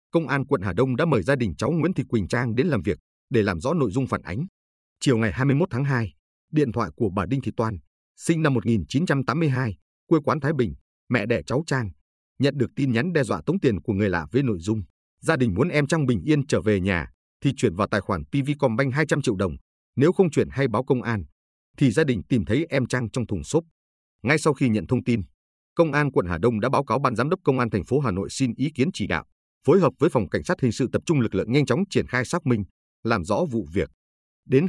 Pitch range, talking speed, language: 95-140 Hz, 255 wpm, Vietnamese